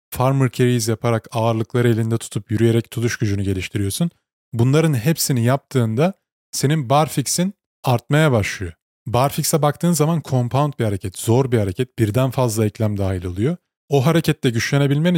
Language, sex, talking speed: Turkish, male, 135 wpm